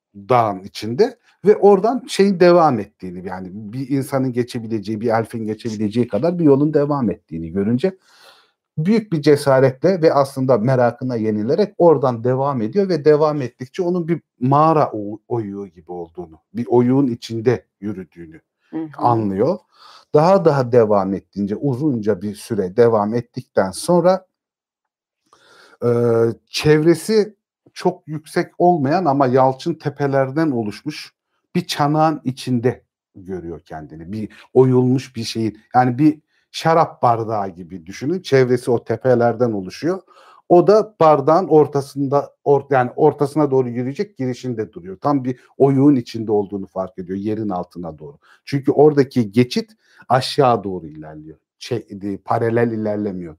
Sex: male